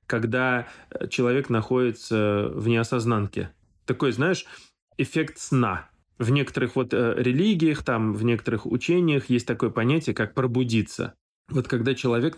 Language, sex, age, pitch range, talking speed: Russian, male, 20-39, 115-140 Hz, 120 wpm